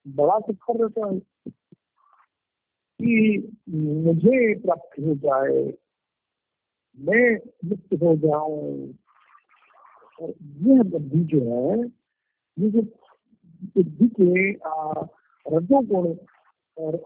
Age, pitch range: 50-69, 170-230 Hz